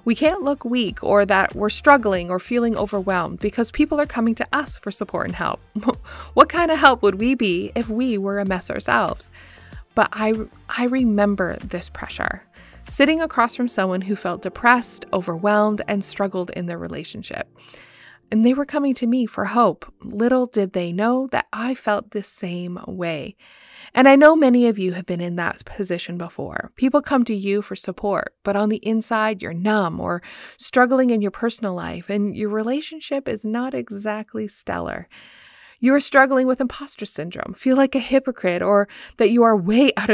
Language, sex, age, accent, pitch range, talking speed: English, female, 30-49, American, 200-250 Hz, 185 wpm